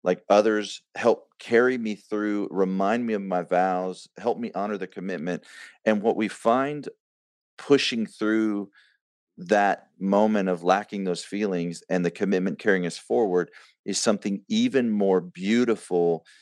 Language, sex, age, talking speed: English, male, 40-59, 145 wpm